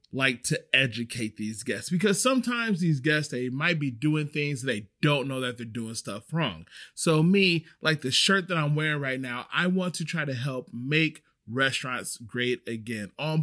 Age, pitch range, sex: 30-49, 135-185 Hz, male